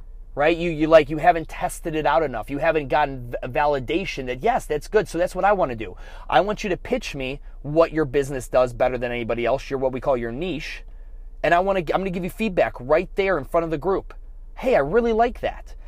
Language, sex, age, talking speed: English, male, 30-49, 255 wpm